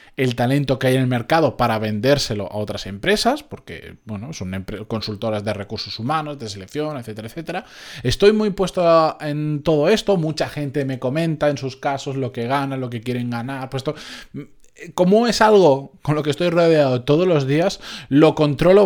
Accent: Spanish